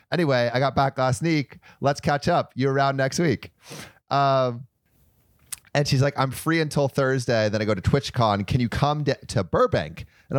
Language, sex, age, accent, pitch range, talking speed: English, male, 30-49, American, 105-135 Hz, 190 wpm